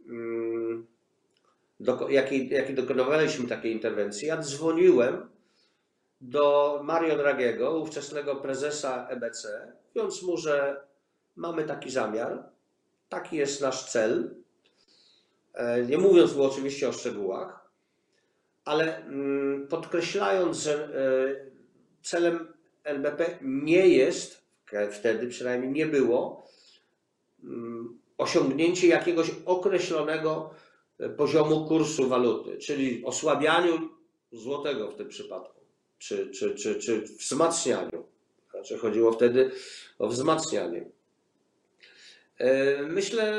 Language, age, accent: Polish, 40-59, native